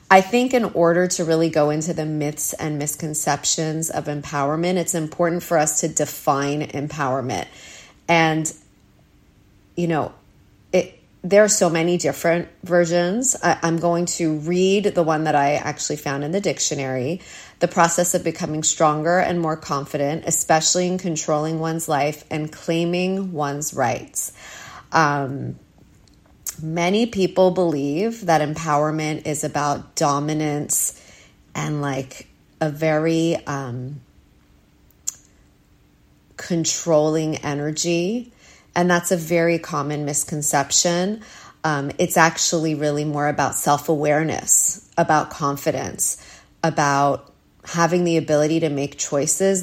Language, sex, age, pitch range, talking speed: English, female, 30-49, 145-170 Hz, 120 wpm